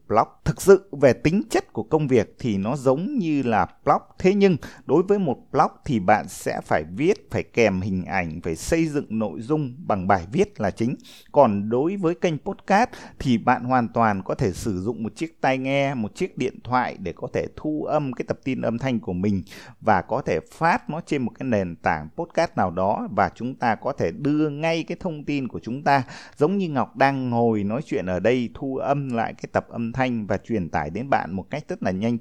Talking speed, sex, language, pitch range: 230 wpm, male, Vietnamese, 105-150 Hz